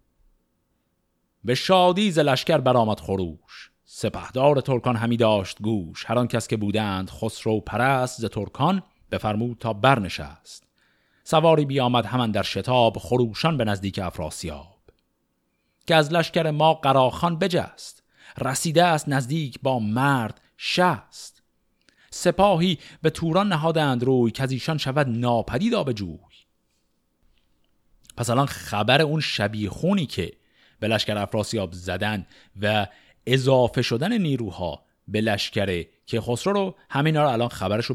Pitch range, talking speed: 105-150 Hz, 120 wpm